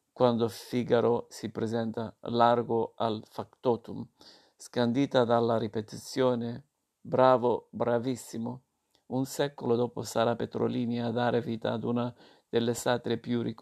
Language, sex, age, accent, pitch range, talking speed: Italian, male, 50-69, native, 115-125 Hz, 110 wpm